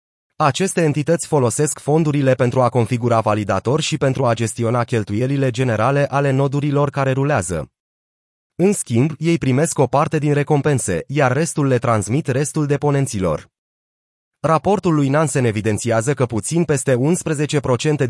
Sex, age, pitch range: male, 30-49, 120-155 Hz